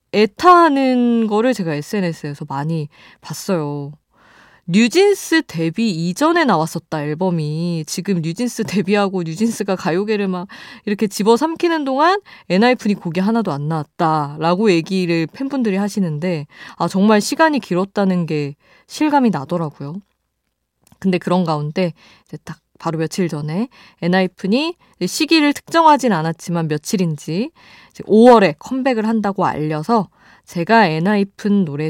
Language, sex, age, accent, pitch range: Korean, female, 20-39, native, 160-225 Hz